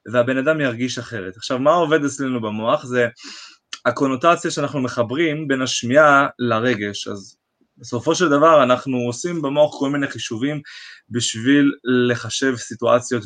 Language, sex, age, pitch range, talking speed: Hebrew, male, 20-39, 120-150 Hz, 130 wpm